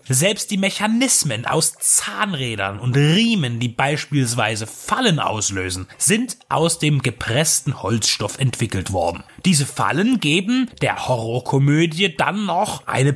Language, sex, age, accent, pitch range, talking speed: German, male, 30-49, German, 120-175 Hz, 120 wpm